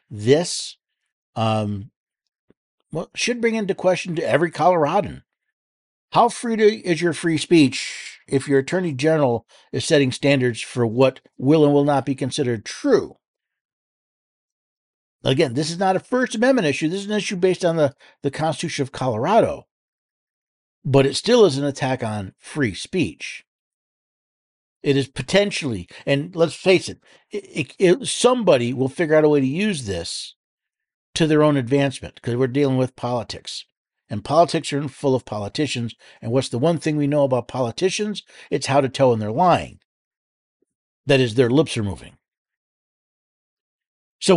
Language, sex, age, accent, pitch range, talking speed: English, male, 60-79, American, 130-175 Hz, 160 wpm